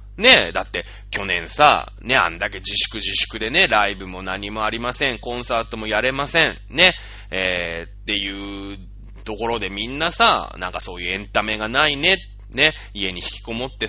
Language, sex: Japanese, male